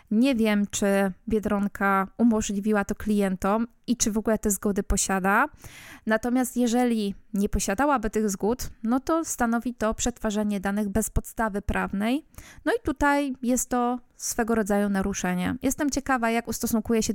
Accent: native